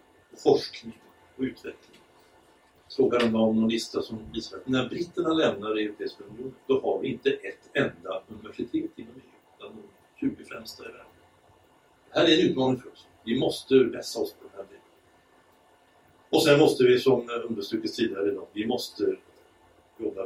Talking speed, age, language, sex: 160 wpm, 60-79, English, male